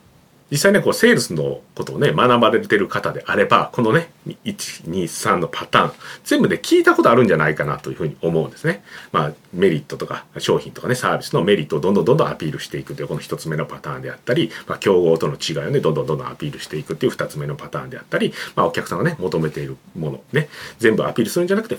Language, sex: Japanese, male